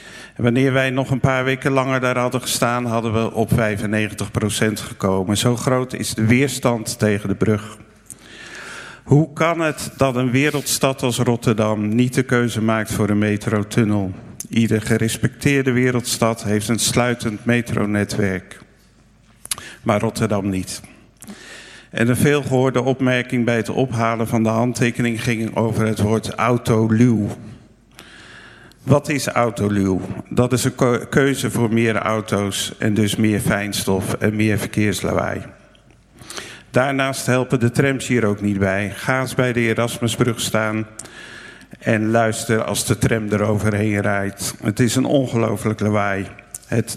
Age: 50-69